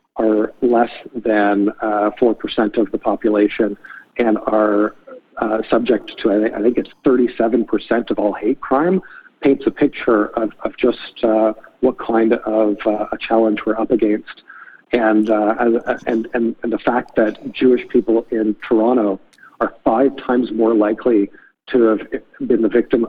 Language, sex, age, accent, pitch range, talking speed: English, male, 50-69, American, 110-125 Hz, 145 wpm